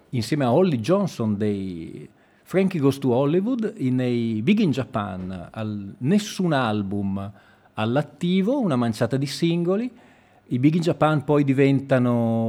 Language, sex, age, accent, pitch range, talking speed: Italian, male, 40-59, native, 110-165 Hz, 130 wpm